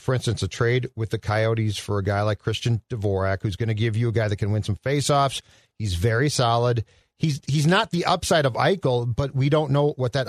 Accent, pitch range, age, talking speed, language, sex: American, 115-155 Hz, 40-59, 240 wpm, English, male